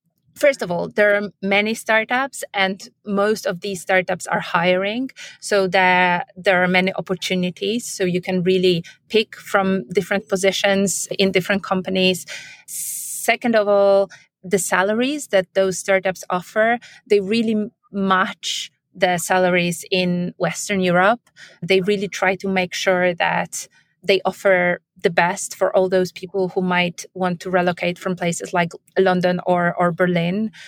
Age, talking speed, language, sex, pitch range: 30-49, 145 wpm, English, female, 185-205 Hz